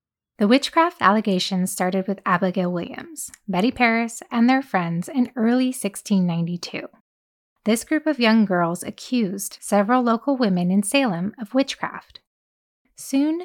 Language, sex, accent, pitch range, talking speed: English, female, American, 190-250 Hz, 130 wpm